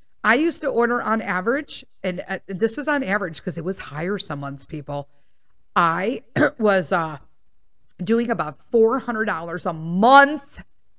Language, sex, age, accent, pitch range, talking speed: English, female, 40-59, American, 175-265 Hz, 140 wpm